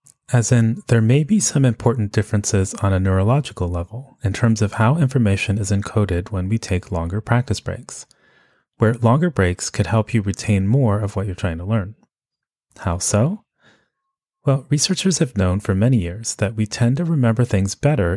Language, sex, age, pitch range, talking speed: English, male, 30-49, 95-125 Hz, 180 wpm